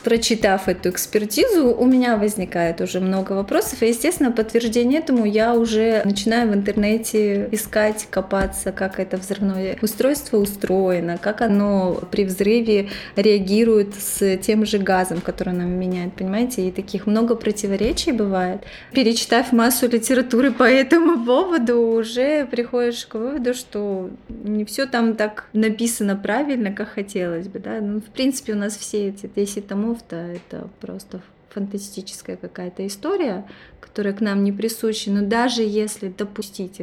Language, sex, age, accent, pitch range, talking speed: Ukrainian, female, 20-39, native, 200-235 Hz, 140 wpm